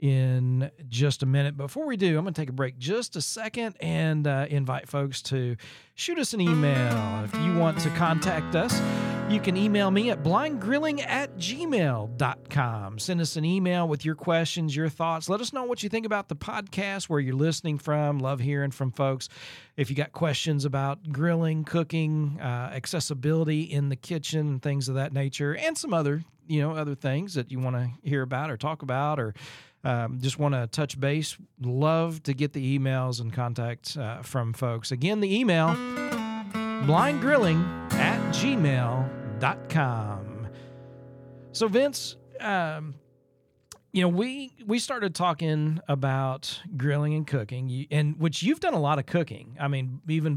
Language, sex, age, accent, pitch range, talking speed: English, male, 40-59, American, 130-170 Hz, 170 wpm